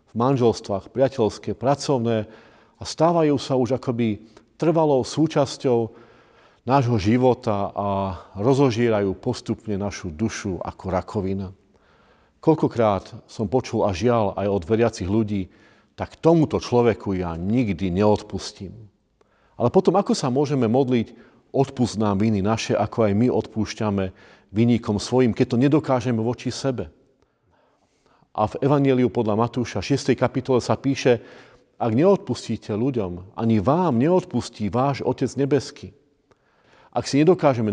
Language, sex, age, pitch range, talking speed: Slovak, male, 40-59, 105-130 Hz, 120 wpm